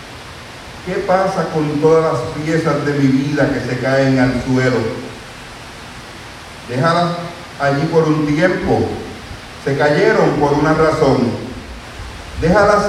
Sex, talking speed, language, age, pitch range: male, 115 wpm, Spanish, 50-69, 130-175 Hz